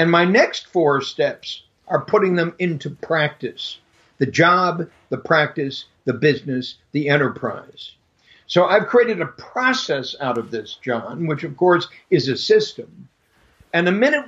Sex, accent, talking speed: male, American, 150 wpm